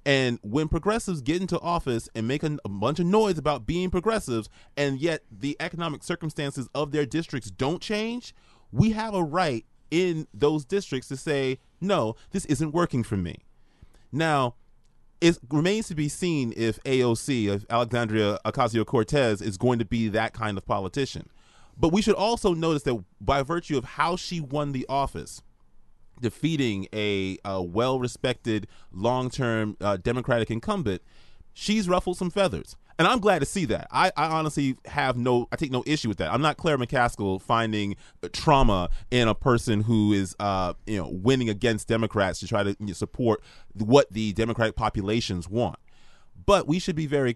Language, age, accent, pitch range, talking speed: English, 30-49, American, 110-155 Hz, 165 wpm